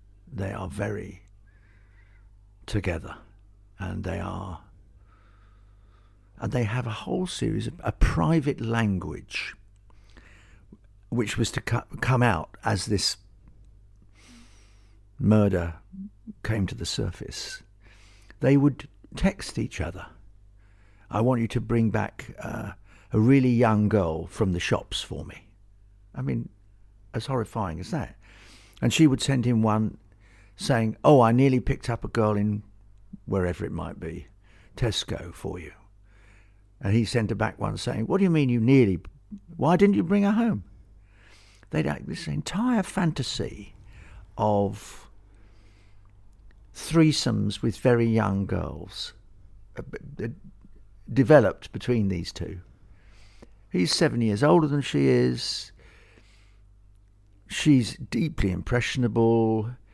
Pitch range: 100-115 Hz